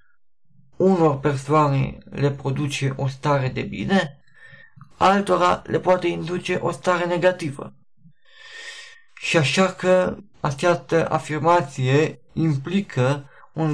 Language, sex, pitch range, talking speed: Romanian, male, 140-180 Hz, 95 wpm